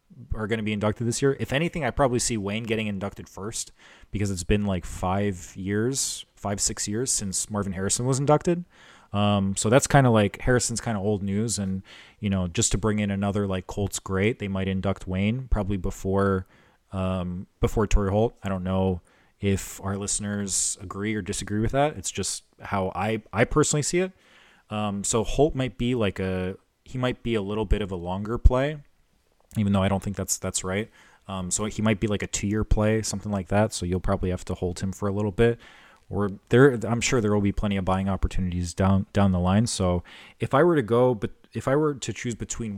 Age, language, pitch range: 30-49, English, 95-115 Hz